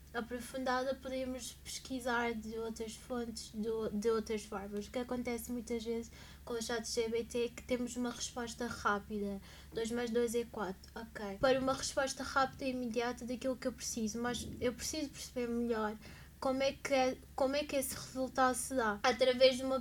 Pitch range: 235-265 Hz